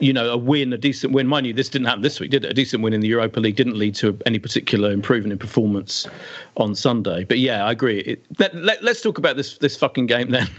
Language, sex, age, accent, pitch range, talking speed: English, male, 40-59, British, 120-160 Hz, 265 wpm